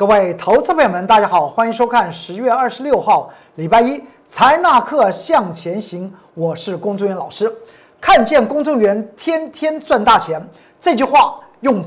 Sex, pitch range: male, 200-320 Hz